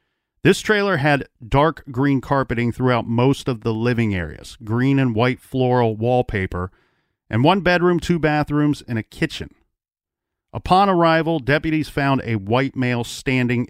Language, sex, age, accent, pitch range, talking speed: English, male, 40-59, American, 115-150 Hz, 145 wpm